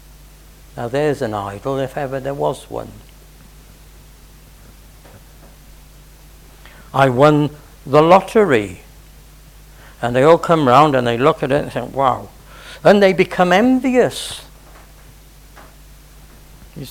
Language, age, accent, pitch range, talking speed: English, 60-79, British, 135-215 Hz, 110 wpm